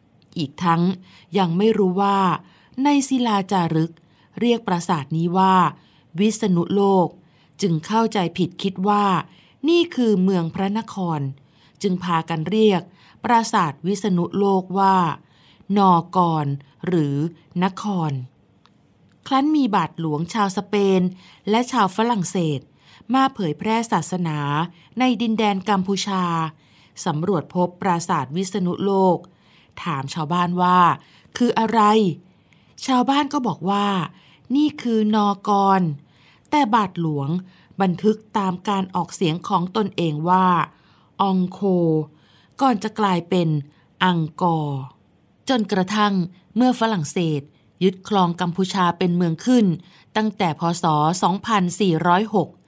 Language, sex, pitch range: Thai, female, 165-205 Hz